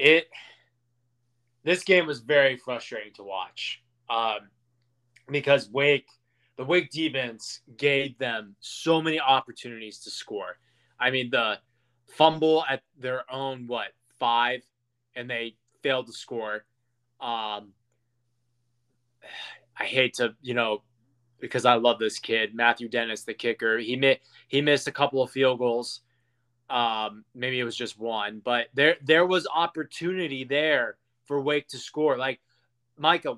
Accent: American